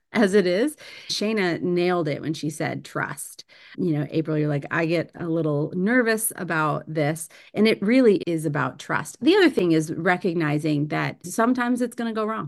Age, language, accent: 30-49, English, American